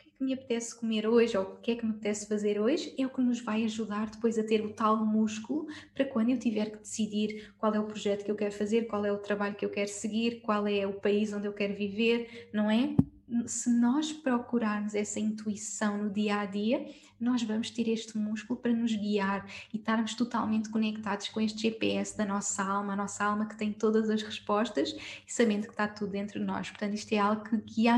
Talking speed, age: 230 wpm, 10-29